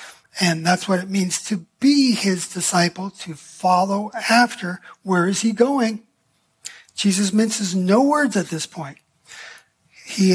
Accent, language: American, English